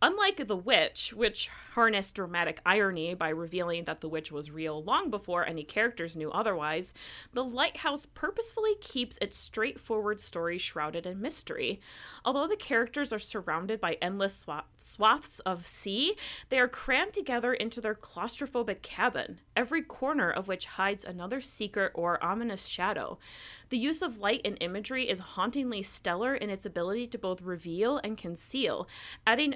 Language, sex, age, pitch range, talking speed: English, female, 30-49, 180-260 Hz, 155 wpm